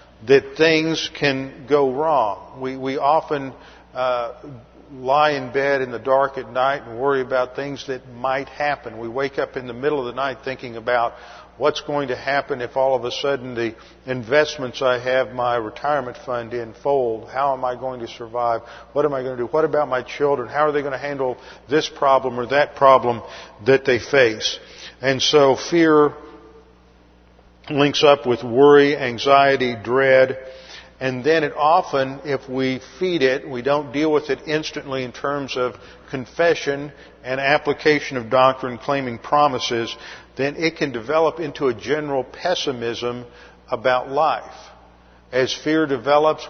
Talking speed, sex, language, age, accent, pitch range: 165 wpm, male, English, 50-69, American, 125-145 Hz